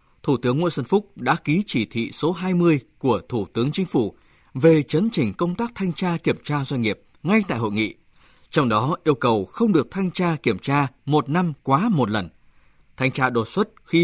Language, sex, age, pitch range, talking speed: Vietnamese, male, 20-39, 115-175 Hz, 220 wpm